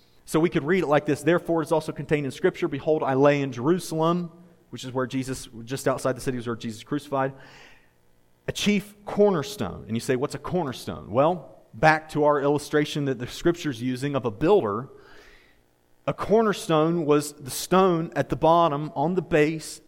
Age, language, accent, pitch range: 30-49, English, American, 140-180 Hz